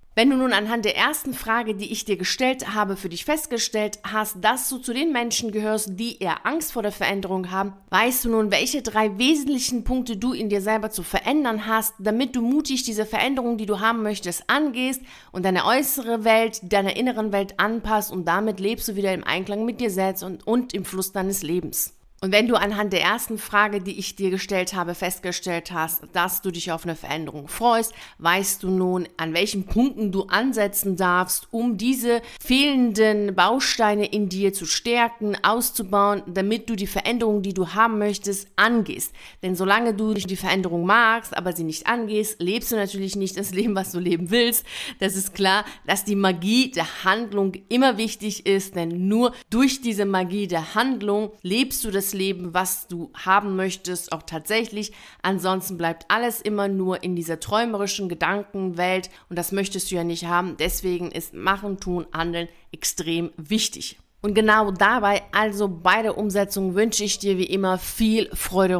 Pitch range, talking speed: 185-225 Hz, 185 wpm